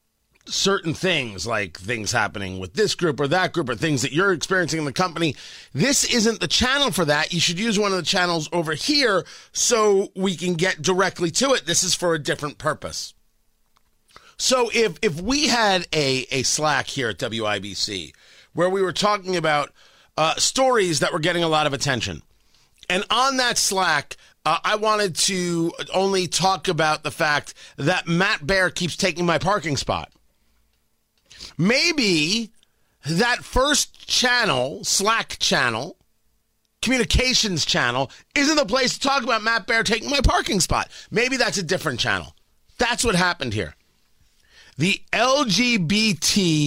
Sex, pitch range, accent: male, 150-225 Hz, American